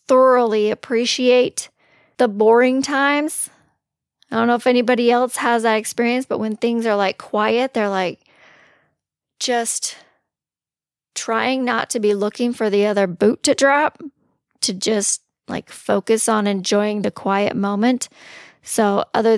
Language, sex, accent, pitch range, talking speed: English, female, American, 205-245 Hz, 140 wpm